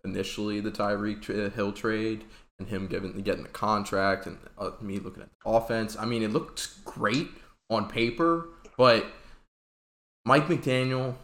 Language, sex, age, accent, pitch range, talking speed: English, male, 20-39, American, 100-145 Hz, 155 wpm